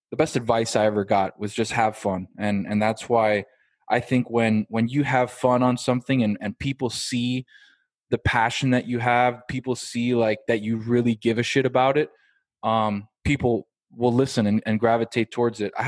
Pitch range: 110-130 Hz